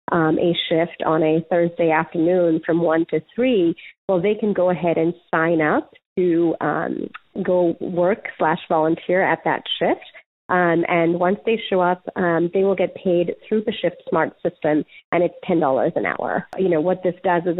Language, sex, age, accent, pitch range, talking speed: English, female, 30-49, American, 165-190 Hz, 180 wpm